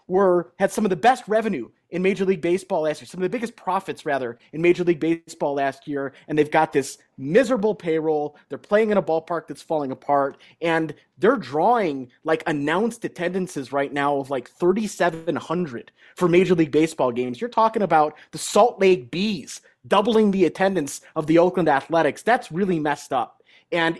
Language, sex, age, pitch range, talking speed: English, male, 30-49, 145-185 Hz, 185 wpm